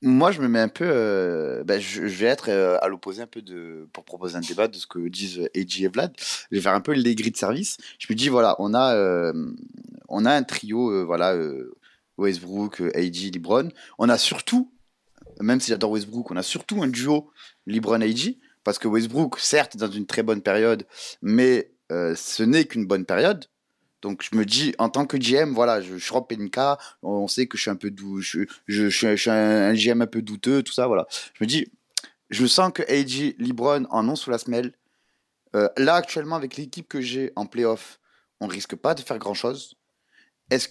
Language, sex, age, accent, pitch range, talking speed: French, male, 20-39, French, 105-145 Hz, 225 wpm